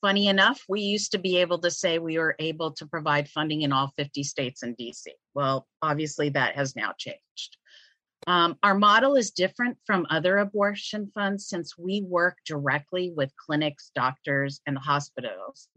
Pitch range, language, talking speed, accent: 145-185 Hz, English, 170 wpm, American